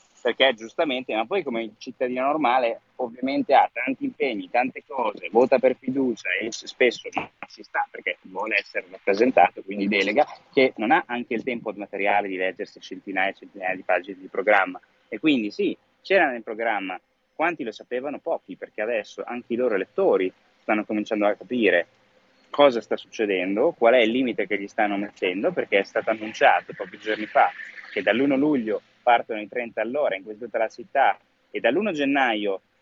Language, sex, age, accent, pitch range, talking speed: Italian, male, 30-49, native, 110-140 Hz, 175 wpm